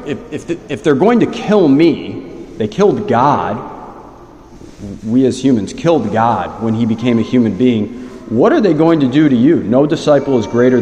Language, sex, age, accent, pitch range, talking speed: English, male, 40-59, American, 95-125 Hz, 175 wpm